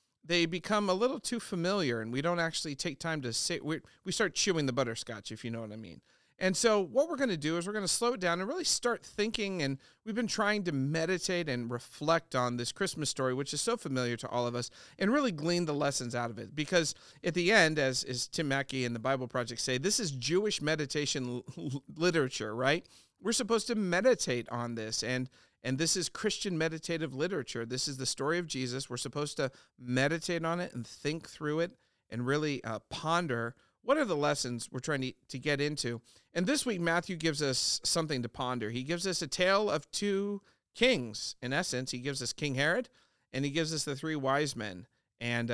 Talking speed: 220 wpm